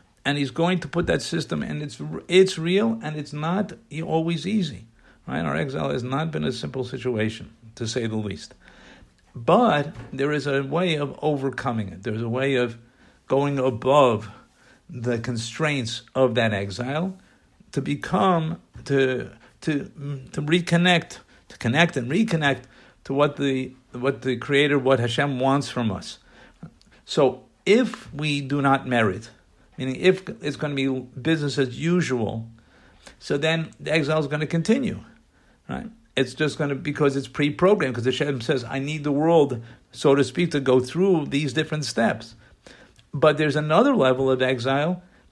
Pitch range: 125-155 Hz